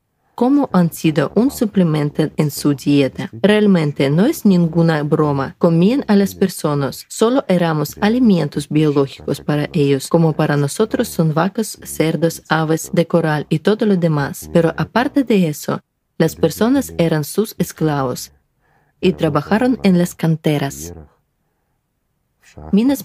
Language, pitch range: Spanish, 150-195 Hz